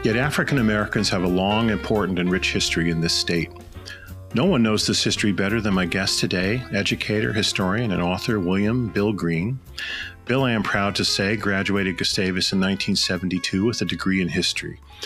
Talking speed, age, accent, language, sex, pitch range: 180 wpm, 40-59, American, English, male, 90-110 Hz